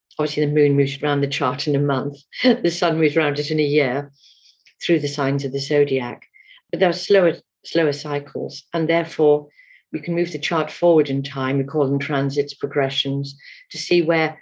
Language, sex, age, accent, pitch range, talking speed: English, female, 50-69, British, 140-170 Hz, 200 wpm